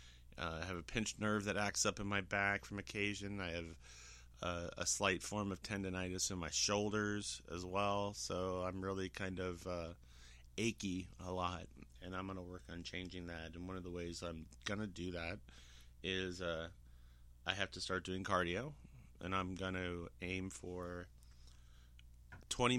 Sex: male